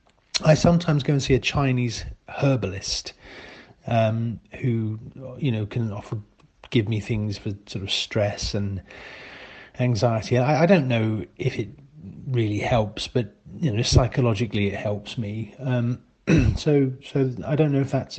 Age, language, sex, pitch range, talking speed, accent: 40-59, English, male, 110-140 Hz, 150 wpm, British